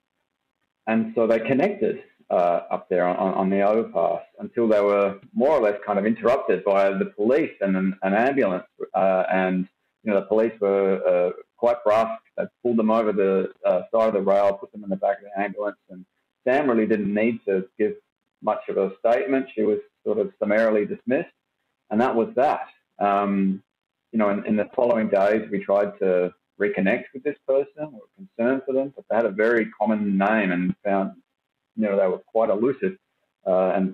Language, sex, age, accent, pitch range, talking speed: English, male, 40-59, Australian, 95-115 Hz, 200 wpm